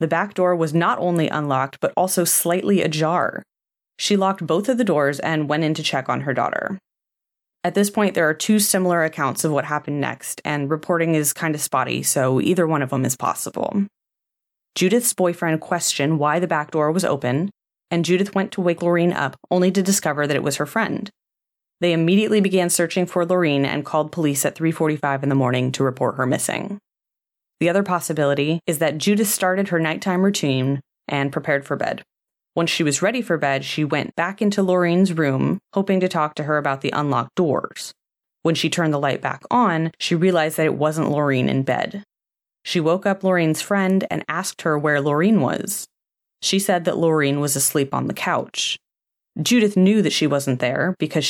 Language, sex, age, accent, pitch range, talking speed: English, female, 20-39, American, 150-185 Hz, 200 wpm